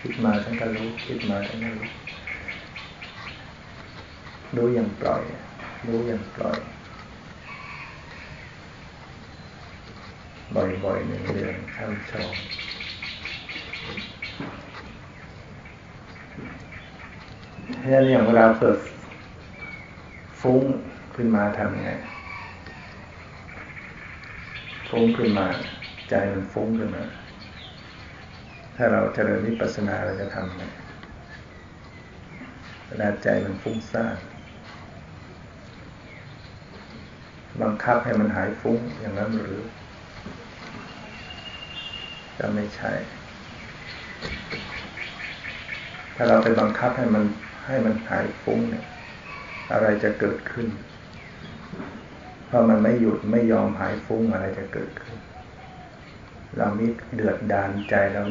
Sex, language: male, Thai